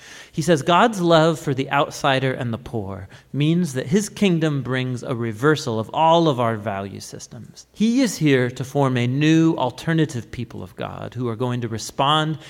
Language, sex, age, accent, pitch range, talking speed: English, male, 40-59, American, 120-170 Hz, 185 wpm